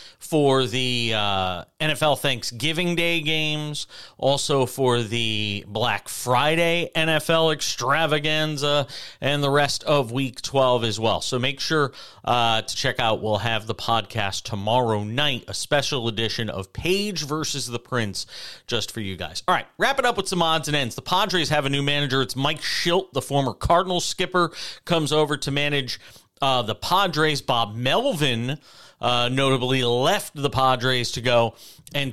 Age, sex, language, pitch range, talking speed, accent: 40-59, male, English, 115-150 Hz, 160 wpm, American